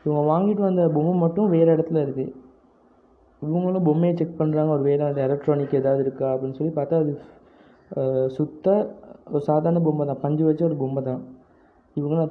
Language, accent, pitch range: Tamil, native, 135-165 Hz